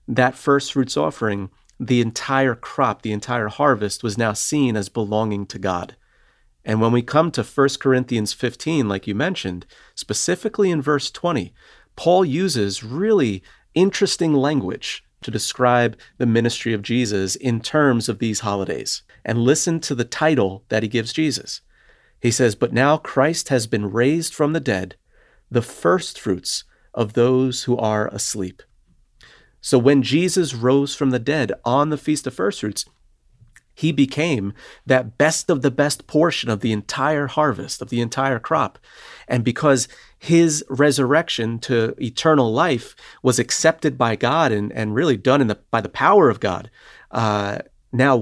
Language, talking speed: English, 160 wpm